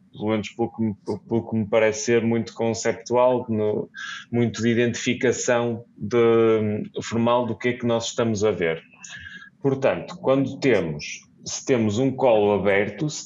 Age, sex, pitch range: 20-39, male, 110-125 Hz